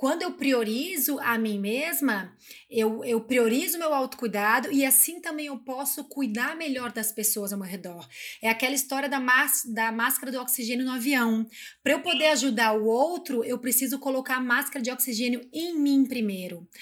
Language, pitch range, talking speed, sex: Vietnamese, 230-285 Hz, 180 wpm, female